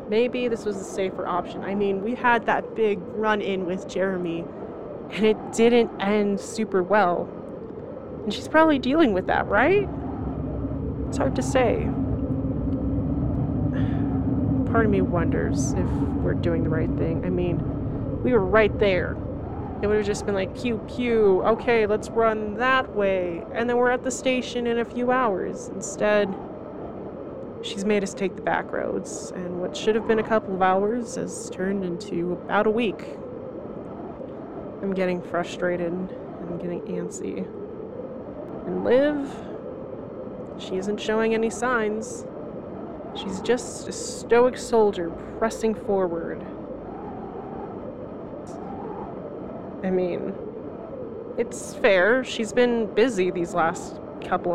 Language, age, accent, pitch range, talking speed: English, 20-39, American, 185-230 Hz, 135 wpm